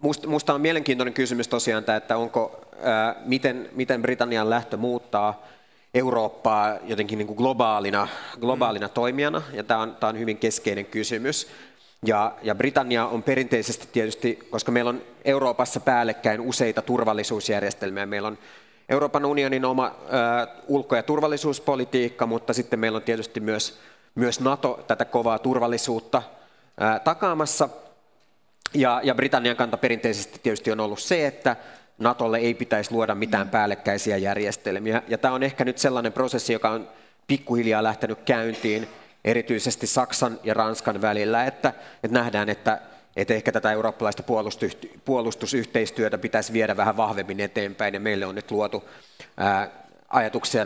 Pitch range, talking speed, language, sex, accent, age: 110-125 Hz, 135 wpm, Finnish, male, native, 30-49